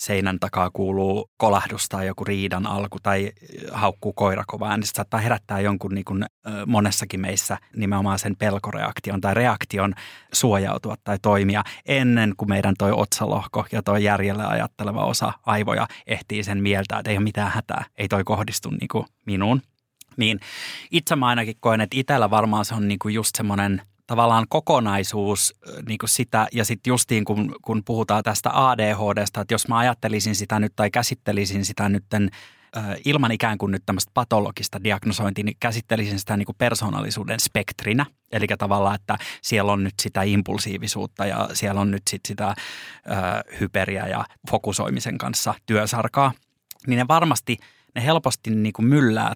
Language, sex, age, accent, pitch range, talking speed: Finnish, male, 20-39, native, 100-115 Hz, 155 wpm